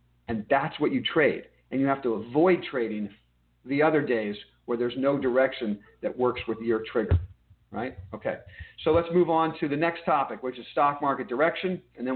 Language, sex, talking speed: English, male, 195 wpm